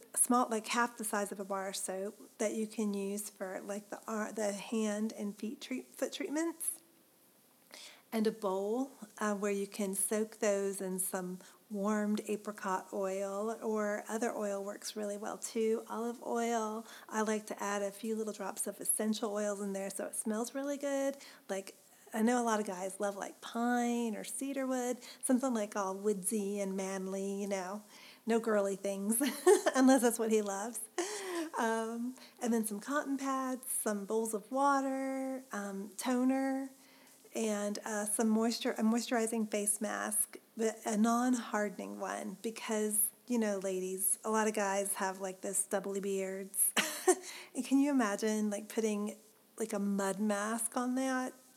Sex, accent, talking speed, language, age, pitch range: female, American, 165 wpm, English, 40-59, 200-240 Hz